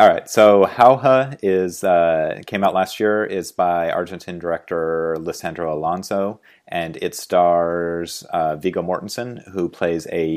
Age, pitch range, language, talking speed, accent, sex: 30-49, 80-95 Hz, English, 140 wpm, American, male